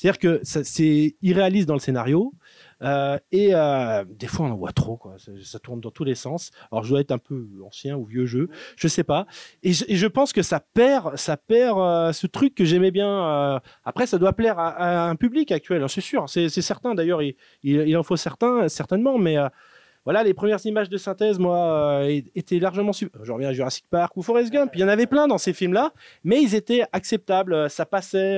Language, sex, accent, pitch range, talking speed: French, male, French, 135-195 Hz, 240 wpm